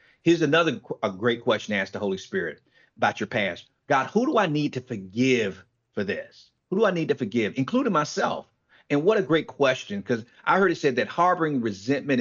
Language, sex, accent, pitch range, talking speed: English, male, American, 120-160 Hz, 210 wpm